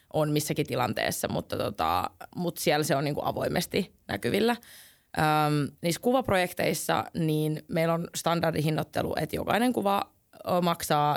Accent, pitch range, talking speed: native, 150-190 Hz, 130 wpm